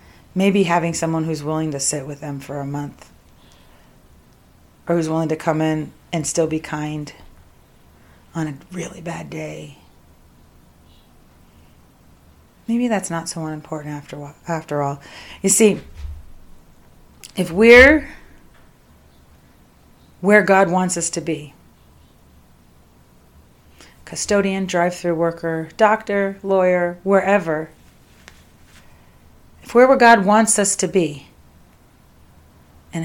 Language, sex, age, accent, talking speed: English, female, 40-59, American, 110 wpm